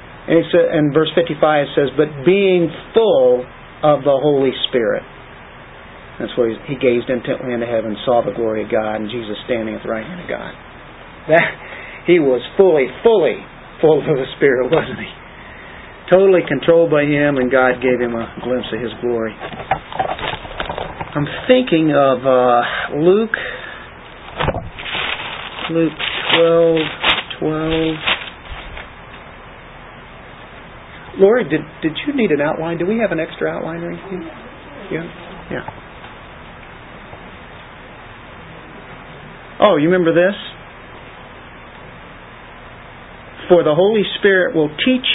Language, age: English, 50-69